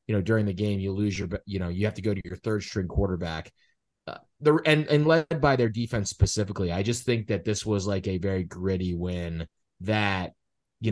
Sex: male